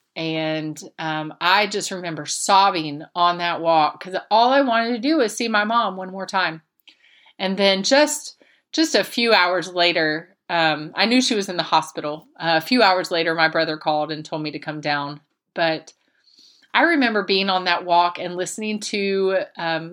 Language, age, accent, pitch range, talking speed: English, 30-49, American, 165-205 Hz, 190 wpm